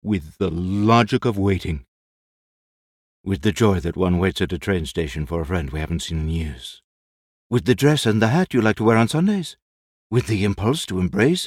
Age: 60-79